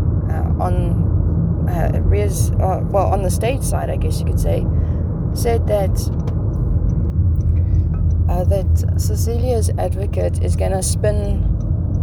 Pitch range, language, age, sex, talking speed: 85-95 Hz, English, 20-39, female, 125 wpm